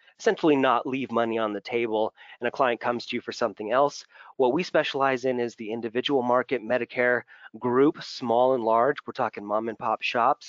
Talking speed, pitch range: 200 wpm, 115-140 Hz